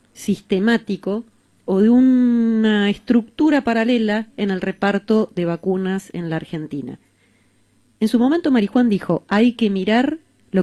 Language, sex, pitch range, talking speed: Spanish, female, 165-225 Hz, 130 wpm